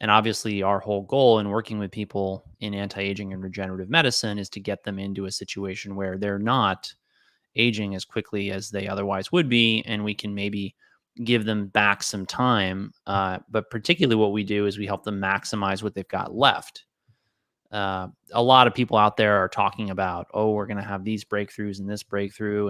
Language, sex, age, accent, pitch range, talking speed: English, male, 20-39, American, 100-110 Hz, 200 wpm